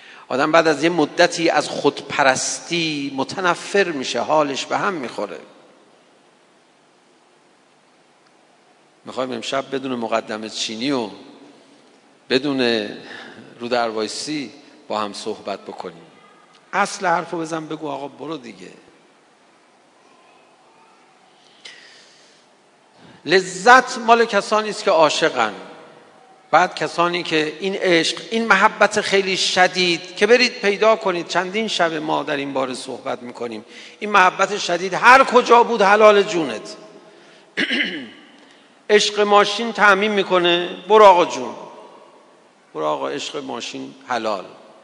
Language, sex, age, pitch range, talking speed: Persian, male, 50-69, 130-205 Hz, 105 wpm